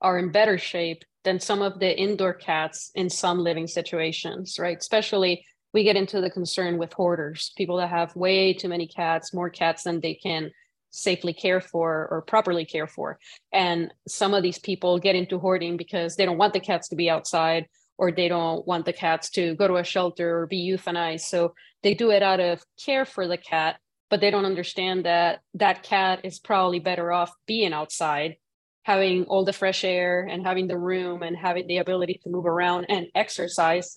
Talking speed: 200 wpm